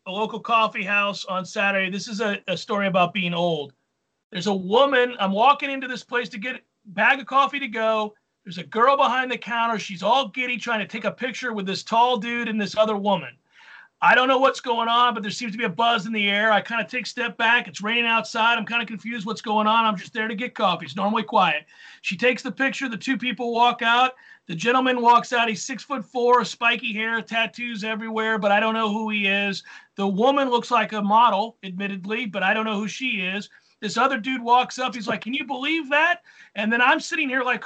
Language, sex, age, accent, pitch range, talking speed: English, male, 40-59, American, 210-255 Hz, 245 wpm